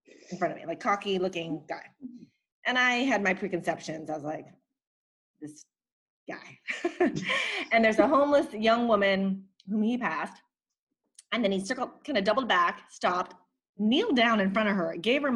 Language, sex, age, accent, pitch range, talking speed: English, female, 30-49, American, 170-230 Hz, 170 wpm